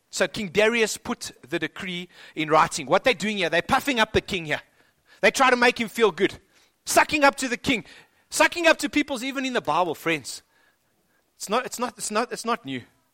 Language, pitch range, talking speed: English, 175-250 Hz, 220 wpm